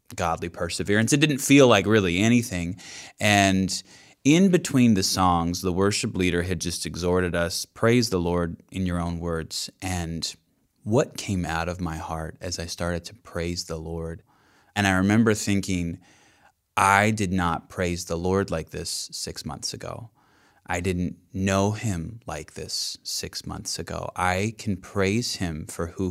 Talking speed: 165 wpm